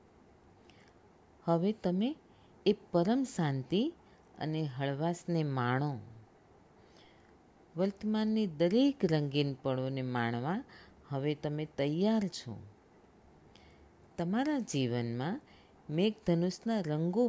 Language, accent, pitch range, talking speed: Gujarati, native, 140-210 Hz, 70 wpm